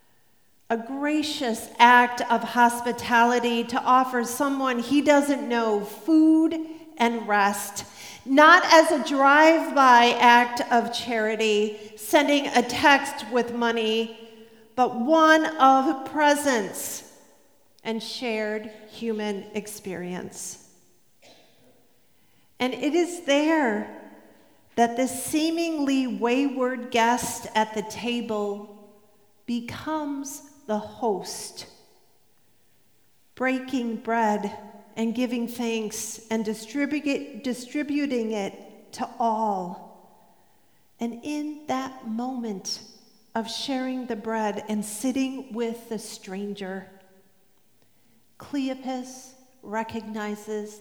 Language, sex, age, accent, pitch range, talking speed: English, female, 40-59, American, 215-285 Hz, 85 wpm